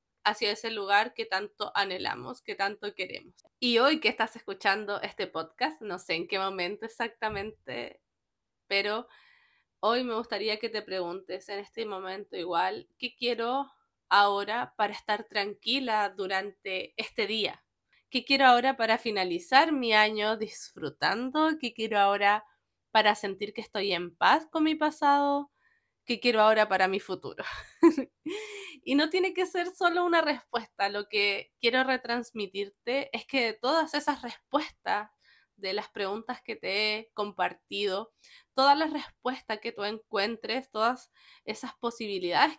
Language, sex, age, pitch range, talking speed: Spanish, female, 20-39, 205-275 Hz, 145 wpm